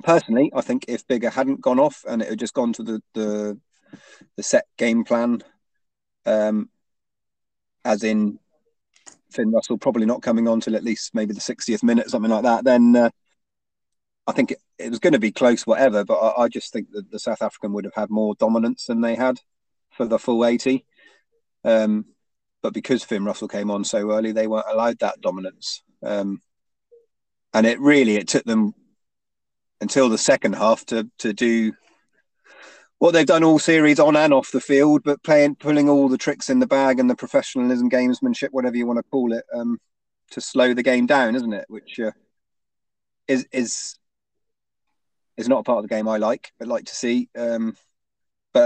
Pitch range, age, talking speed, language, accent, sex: 110-150 Hz, 30-49, 195 wpm, English, British, male